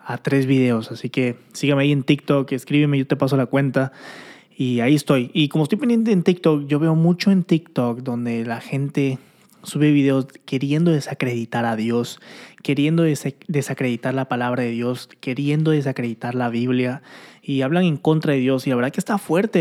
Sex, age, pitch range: male, 20-39, 135-175 Hz